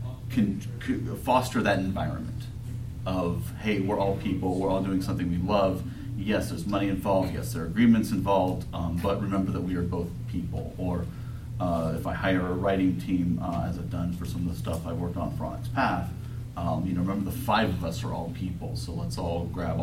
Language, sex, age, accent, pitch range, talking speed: English, male, 30-49, American, 95-120 Hz, 215 wpm